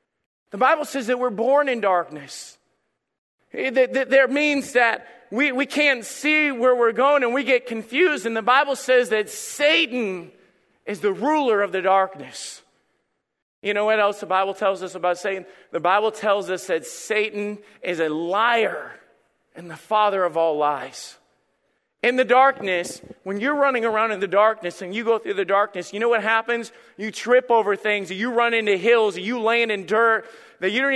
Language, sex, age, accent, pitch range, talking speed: English, male, 40-59, American, 195-260 Hz, 185 wpm